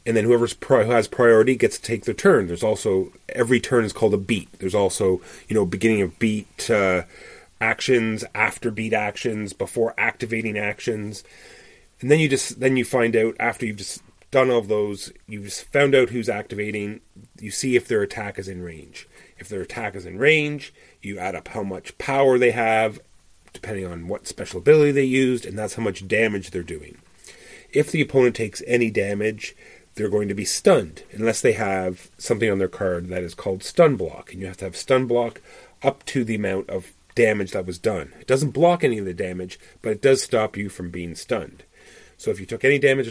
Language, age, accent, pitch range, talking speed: English, 30-49, American, 100-125 Hz, 210 wpm